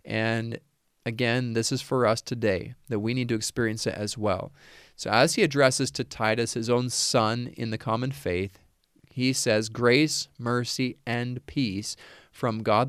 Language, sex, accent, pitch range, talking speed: English, male, American, 110-130 Hz, 170 wpm